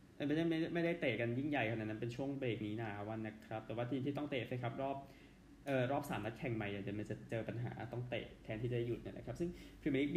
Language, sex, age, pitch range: Thai, male, 20-39, 110-140 Hz